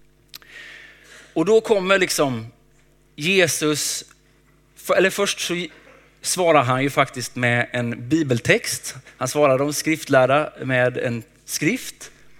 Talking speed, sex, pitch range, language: 105 wpm, male, 125-170 Hz, Swedish